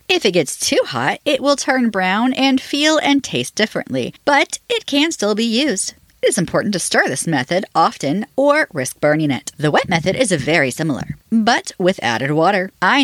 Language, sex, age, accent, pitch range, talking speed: English, female, 40-59, American, 155-255 Hz, 195 wpm